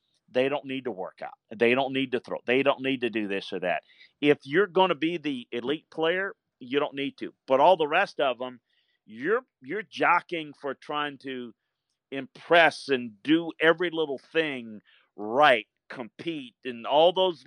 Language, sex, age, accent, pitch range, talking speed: English, male, 40-59, American, 130-160 Hz, 185 wpm